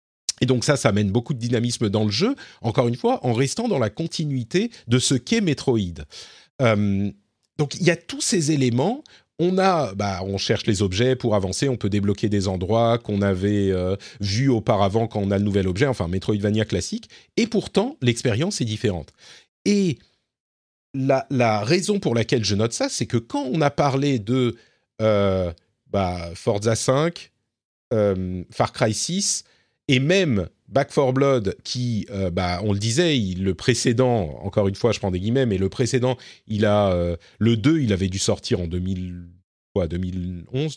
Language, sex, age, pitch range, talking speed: French, male, 40-59, 100-140 Hz, 185 wpm